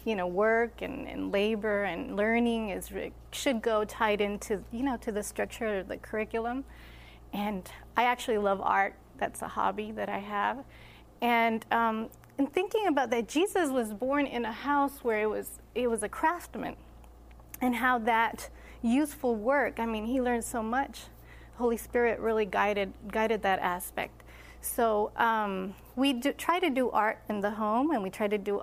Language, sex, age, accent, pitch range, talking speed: English, female, 30-49, American, 205-255 Hz, 180 wpm